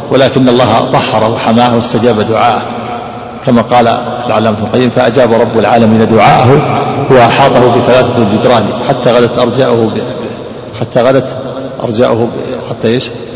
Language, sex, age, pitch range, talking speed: Arabic, male, 50-69, 115-130 Hz, 120 wpm